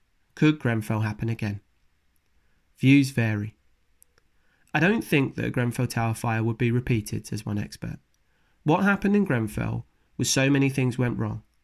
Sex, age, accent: male, 30-49, British